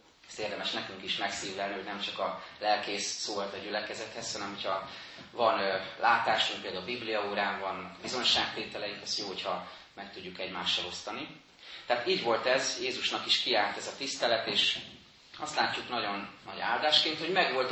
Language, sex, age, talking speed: Hungarian, male, 30-49, 165 wpm